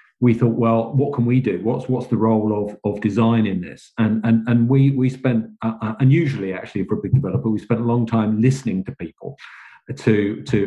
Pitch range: 100-120 Hz